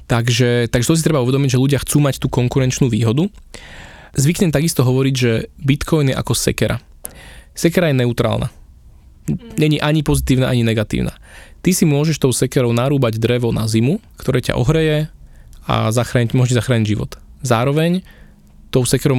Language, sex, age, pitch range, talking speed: Slovak, male, 20-39, 115-140 Hz, 155 wpm